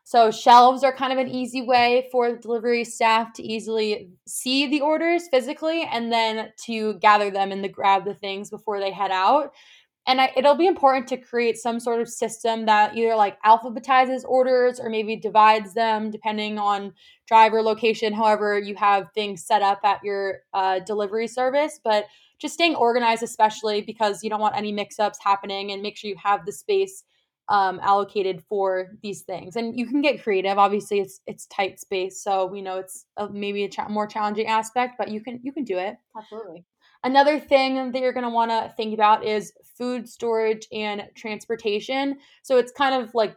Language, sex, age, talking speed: English, female, 20-39, 190 wpm